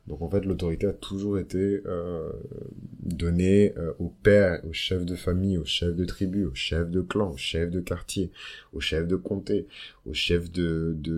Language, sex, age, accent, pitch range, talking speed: French, male, 30-49, French, 80-90 Hz, 195 wpm